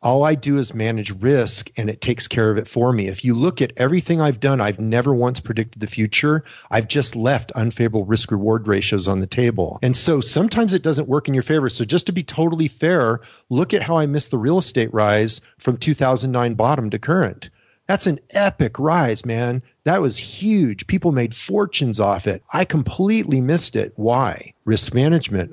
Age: 40-59